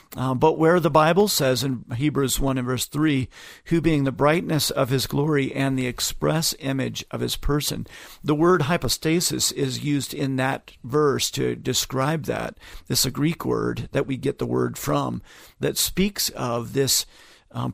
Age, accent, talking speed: 50-69, American, 175 wpm